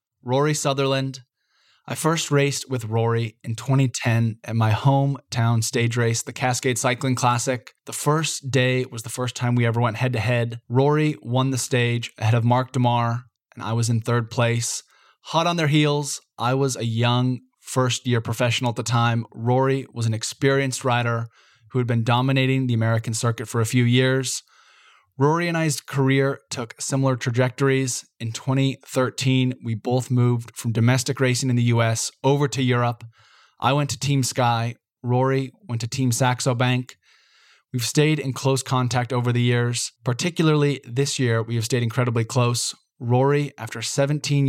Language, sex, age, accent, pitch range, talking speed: English, male, 20-39, American, 120-135 Hz, 170 wpm